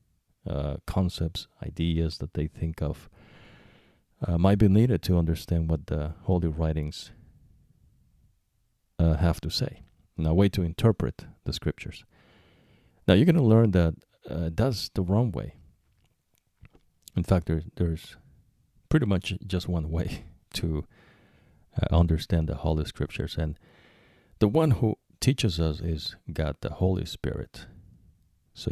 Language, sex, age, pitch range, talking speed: English, male, 40-59, 80-100 Hz, 140 wpm